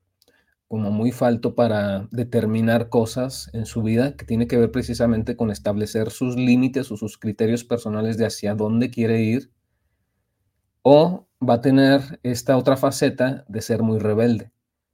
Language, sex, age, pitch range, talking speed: Spanish, male, 30-49, 110-125 Hz, 155 wpm